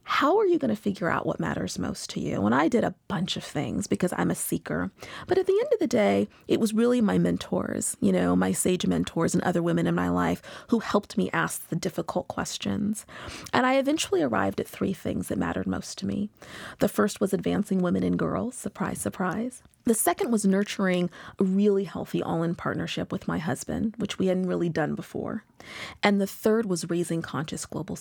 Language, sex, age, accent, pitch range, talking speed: English, female, 30-49, American, 170-225 Hz, 210 wpm